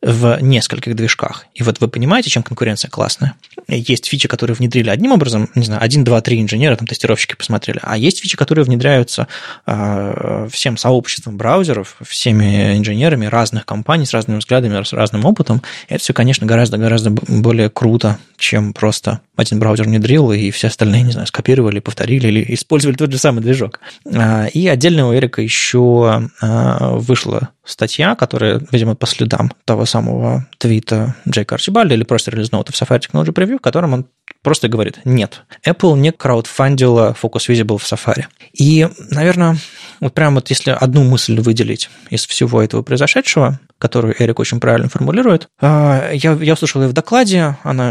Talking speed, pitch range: 160 wpm, 110-140 Hz